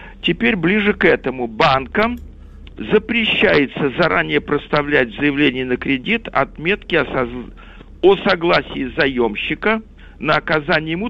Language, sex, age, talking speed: Russian, male, 50-69, 110 wpm